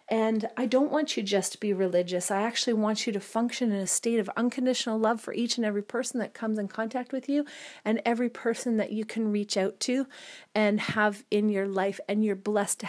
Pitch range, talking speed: 200-240 Hz, 235 wpm